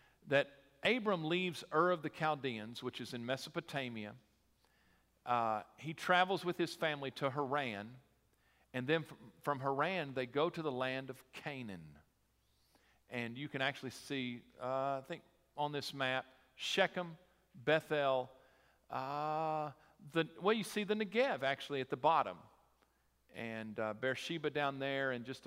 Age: 50-69